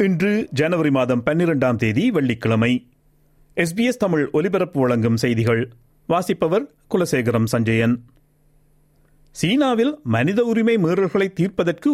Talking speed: 80 wpm